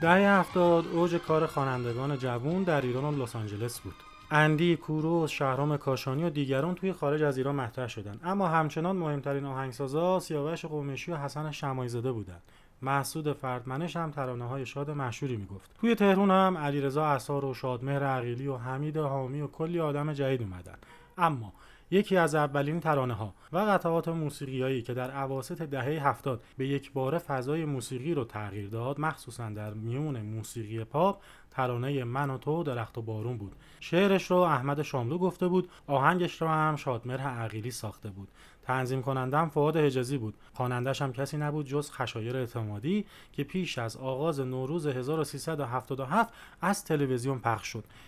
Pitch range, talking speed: 125-160 Hz, 160 wpm